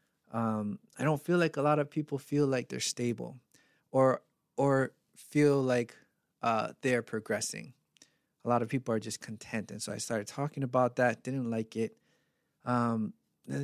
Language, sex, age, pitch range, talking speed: English, male, 20-39, 115-135 Hz, 170 wpm